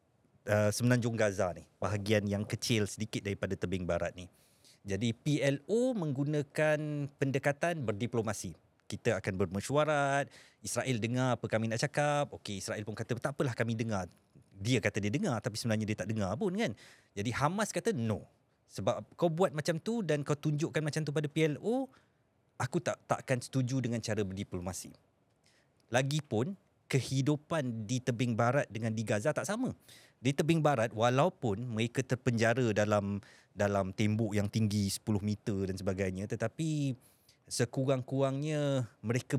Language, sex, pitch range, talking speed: Malay, male, 105-145 Hz, 145 wpm